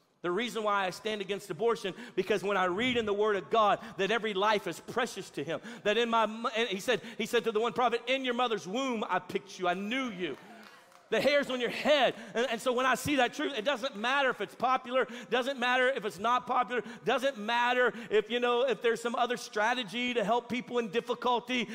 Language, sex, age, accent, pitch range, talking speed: English, male, 40-59, American, 210-245 Hz, 235 wpm